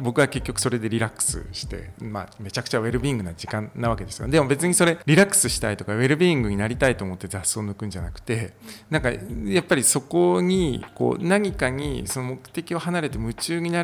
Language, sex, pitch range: Japanese, male, 100-140 Hz